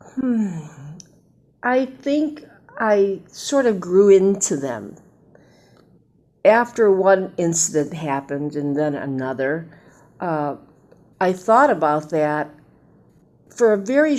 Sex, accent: female, American